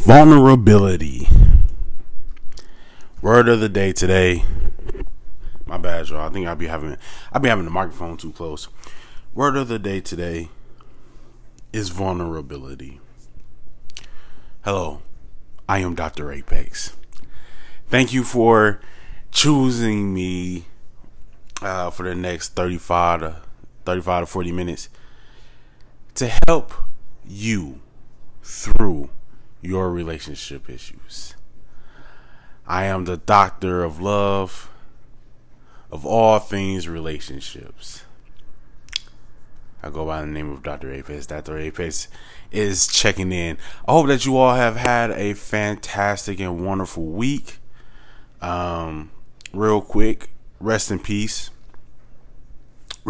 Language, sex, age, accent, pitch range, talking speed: English, male, 20-39, American, 80-110 Hz, 105 wpm